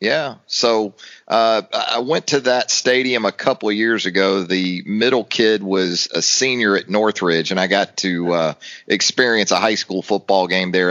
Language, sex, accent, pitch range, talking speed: English, male, American, 95-115 Hz, 180 wpm